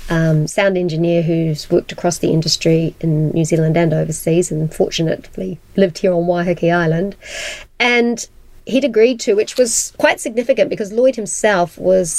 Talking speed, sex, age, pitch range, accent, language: 160 wpm, female, 30-49, 175-215 Hz, Australian, English